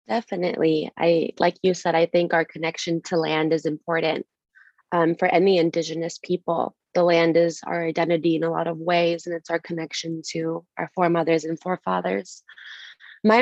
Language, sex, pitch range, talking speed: English, female, 160-180 Hz, 170 wpm